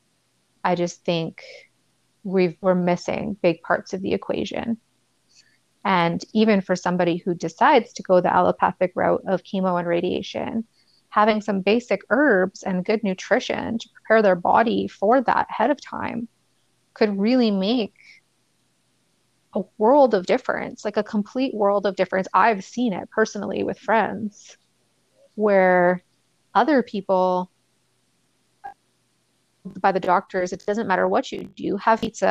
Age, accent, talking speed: 30-49, American, 135 wpm